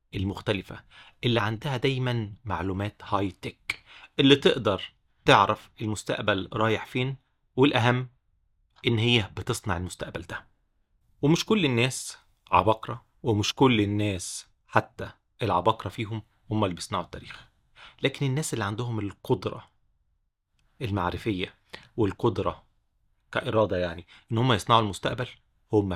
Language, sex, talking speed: Arabic, male, 110 wpm